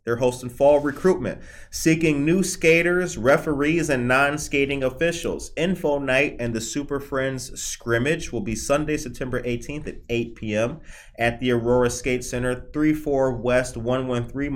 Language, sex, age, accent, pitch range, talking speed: English, male, 30-49, American, 115-145 Hz, 135 wpm